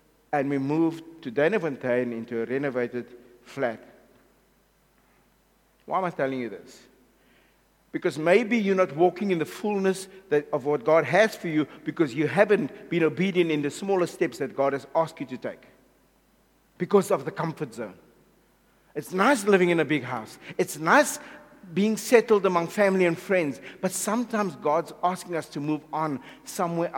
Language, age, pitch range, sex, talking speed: English, 60-79, 145-205 Hz, male, 165 wpm